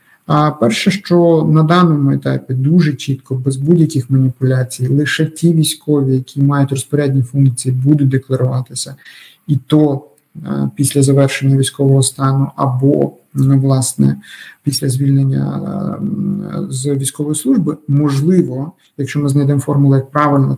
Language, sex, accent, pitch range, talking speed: Ukrainian, male, native, 130-150 Hz, 115 wpm